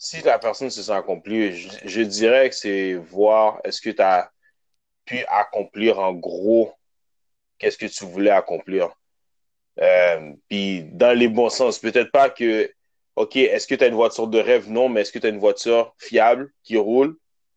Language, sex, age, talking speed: French, male, 30-49, 185 wpm